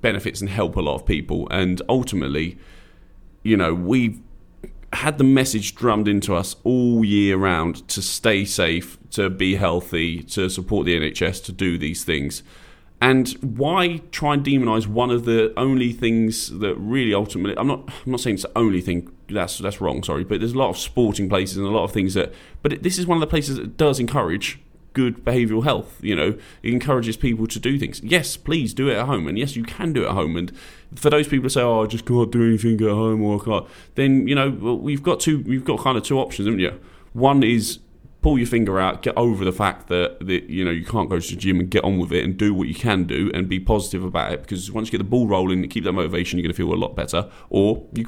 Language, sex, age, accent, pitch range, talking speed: English, male, 30-49, British, 90-120 Hz, 245 wpm